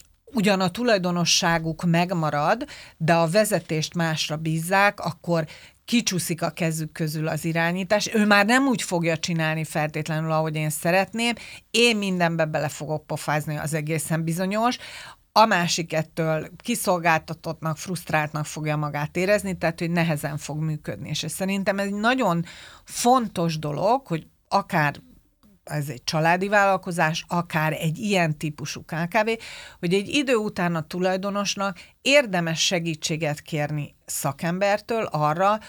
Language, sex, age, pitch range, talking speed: Hungarian, female, 40-59, 155-200 Hz, 130 wpm